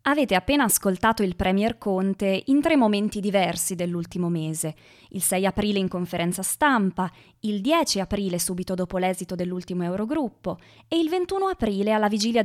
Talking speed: 155 wpm